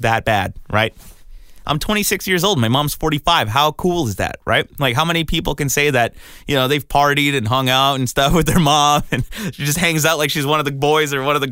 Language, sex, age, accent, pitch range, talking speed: English, male, 30-49, American, 110-150 Hz, 255 wpm